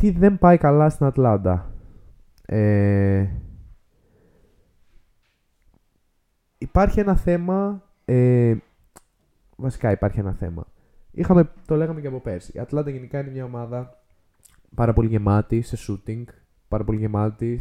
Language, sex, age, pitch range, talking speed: Greek, male, 20-39, 95-125 Hz, 110 wpm